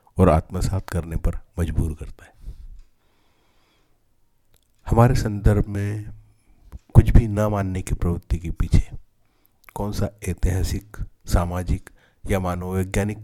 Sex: male